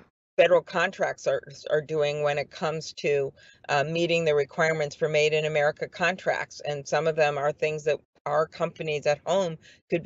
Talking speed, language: 180 wpm, English